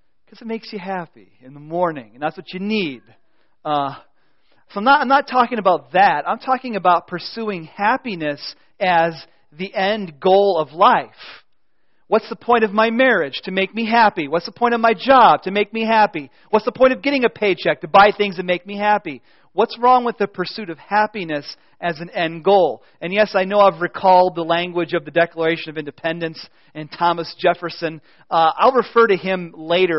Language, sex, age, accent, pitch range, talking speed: English, male, 40-59, American, 155-215 Hz, 200 wpm